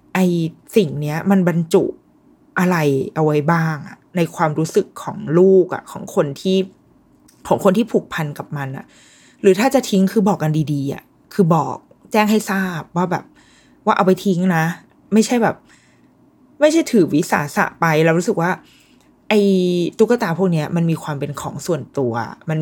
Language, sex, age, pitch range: Thai, female, 20-39, 155-200 Hz